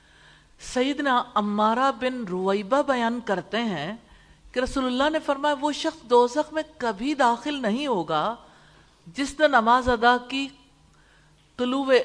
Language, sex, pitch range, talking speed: English, female, 180-255 Hz, 120 wpm